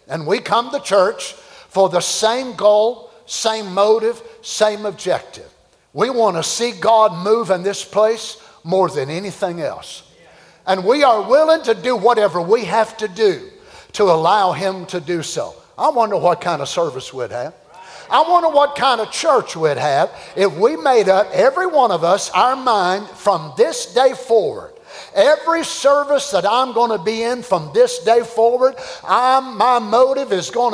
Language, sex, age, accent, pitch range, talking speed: English, male, 50-69, American, 205-275 Hz, 175 wpm